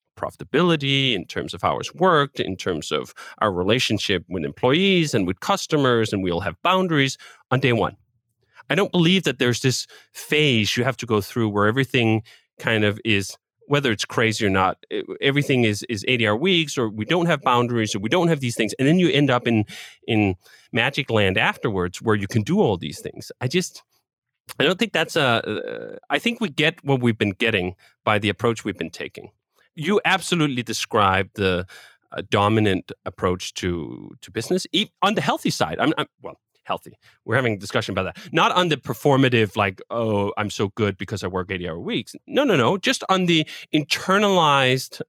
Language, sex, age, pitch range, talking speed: English, male, 30-49, 105-150 Hz, 195 wpm